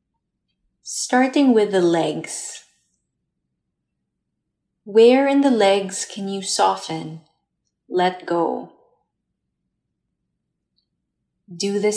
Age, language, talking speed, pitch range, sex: 30-49, English, 75 wpm, 170-200 Hz, female